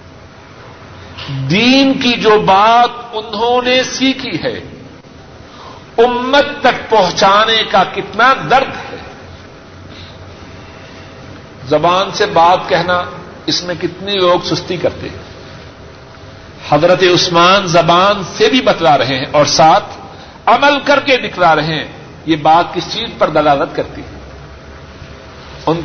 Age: 50-69